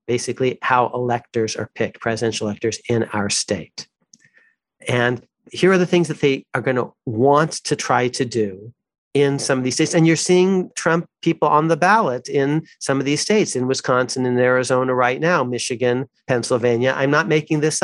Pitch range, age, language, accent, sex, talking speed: 125-155 Hz, 40-59, English, American, male, 185 wpm